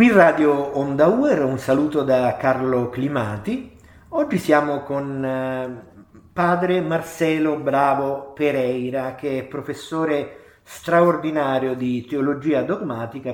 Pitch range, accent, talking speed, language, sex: 120-150 Hz, native, 100 wpm, Italian, male